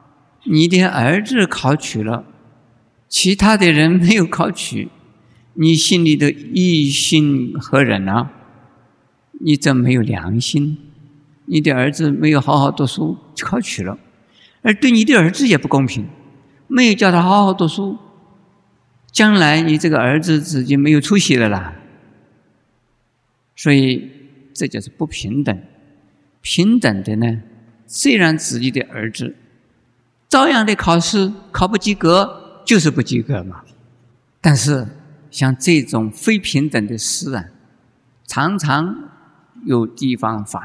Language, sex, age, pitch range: Chinese, male, 50-69, 120-165 Hz